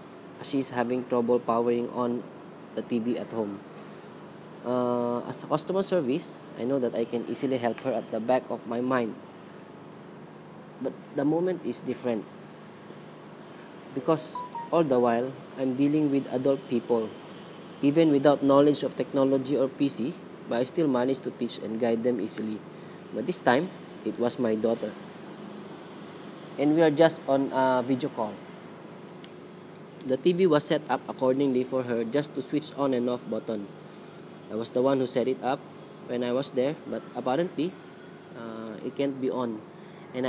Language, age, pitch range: English, 20-39, 120-145 Hz